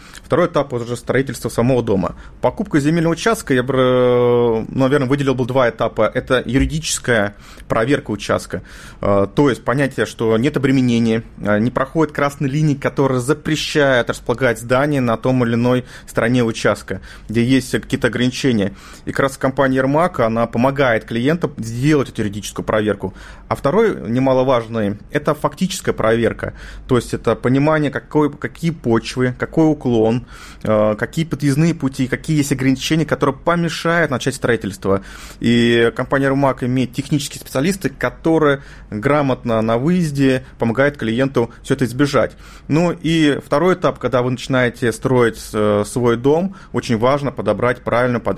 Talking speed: 135 wpm